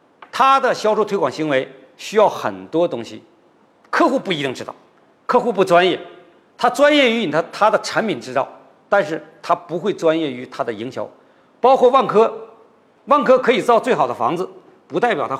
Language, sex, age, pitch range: Chinese, male, 50-69, 175-255 Hz